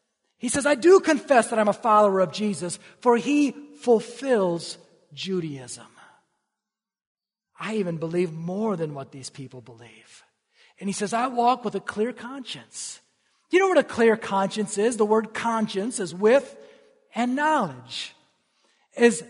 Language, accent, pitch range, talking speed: English, American, 170-235 Hz, 150 wpm